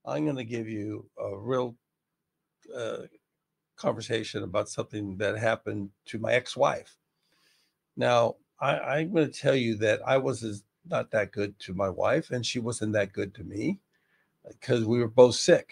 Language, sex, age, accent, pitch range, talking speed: English, male, 50-69, American, 110-155 Hz, 165 wpm